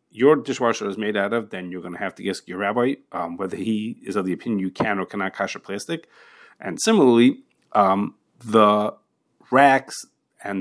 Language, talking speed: English, 190 wpm